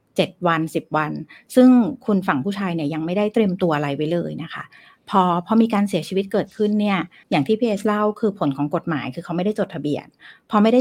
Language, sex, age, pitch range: Thai, female, 60-79, 165-220 Hz